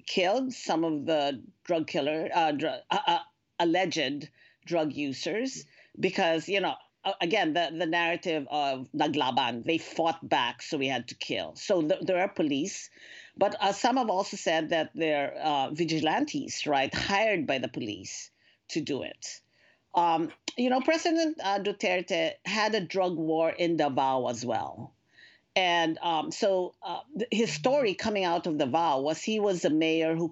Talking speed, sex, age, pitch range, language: 160 wpm, female, 50-69, 165-220 Hz, English